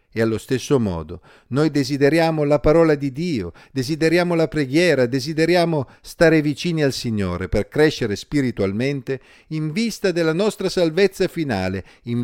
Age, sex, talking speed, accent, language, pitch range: 50-69, male, 135 wpm, native, Italian, 115-160 Hz